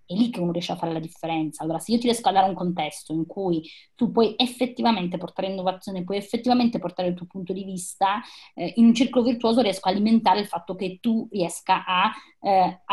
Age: 20-39